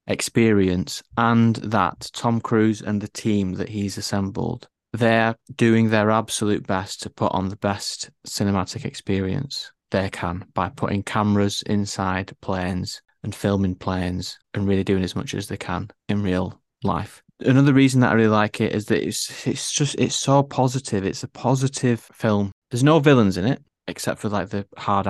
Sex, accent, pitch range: male, British, 95-115 Hz